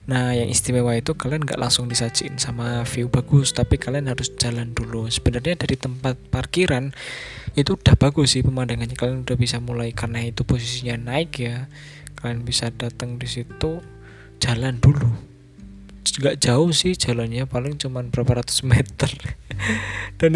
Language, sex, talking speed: Indonesian, male, 145 wpm